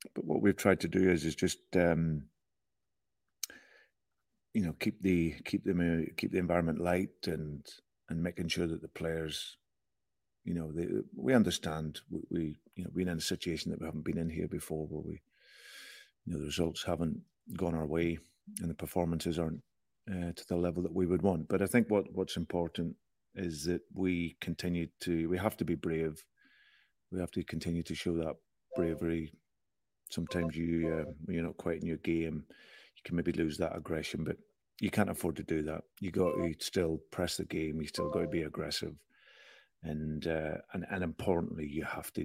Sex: male